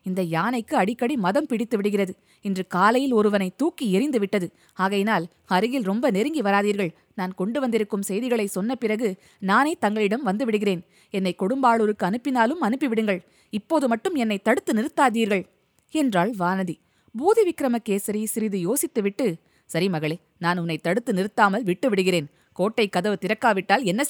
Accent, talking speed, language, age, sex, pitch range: native, 125 wpm, Tamil, 20-39, female, 185-230 Hz